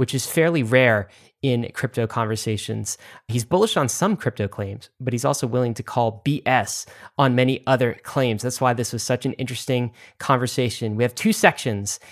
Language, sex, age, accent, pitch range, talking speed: English, male, 30-49, American, 115-135 Hz, 180 wpm